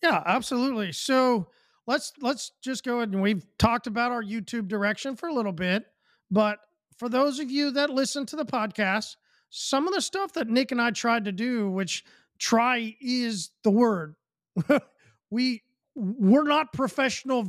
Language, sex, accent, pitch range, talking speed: English, male, American, 215-275 Hz, 170 wpm